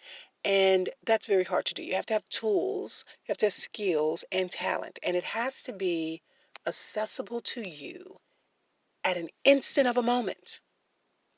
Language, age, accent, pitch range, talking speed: English, 40-59, American, 185-260 Hz, 170 wpm